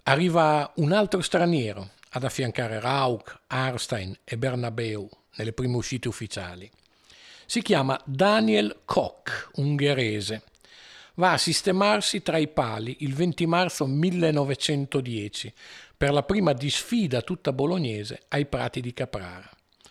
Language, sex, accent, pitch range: Italian, male, native, 115-160 Hz